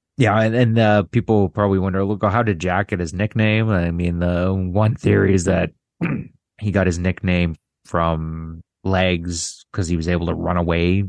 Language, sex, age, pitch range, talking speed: English, male, 30-49, 85-100 Hz, 185 wpm